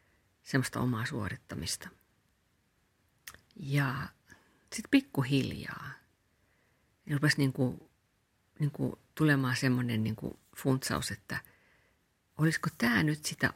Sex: female